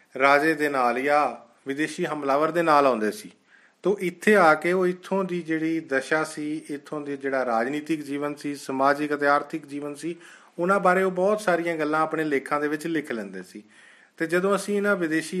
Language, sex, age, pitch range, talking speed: Punjabi, male, 40-59, 135-165 Hz, 190 wpm